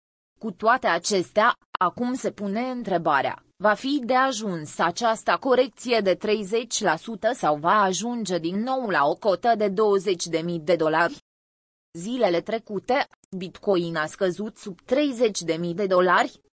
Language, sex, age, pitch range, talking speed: Romanian, female, 20-39, 180-235 Hz, 130 wpm